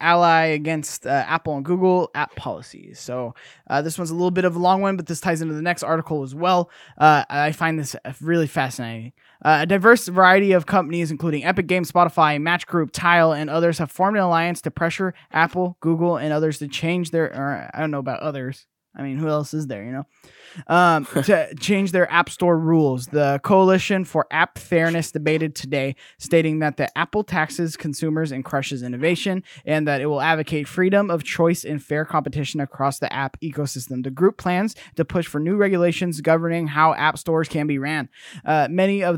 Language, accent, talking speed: English, American, 200 wpm